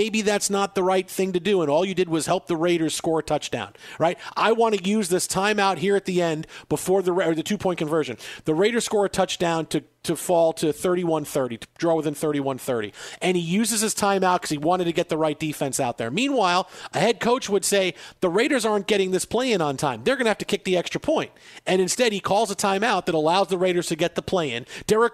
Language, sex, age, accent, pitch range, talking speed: English, male, 40-59, American, 160-200 Hz, 255 wpm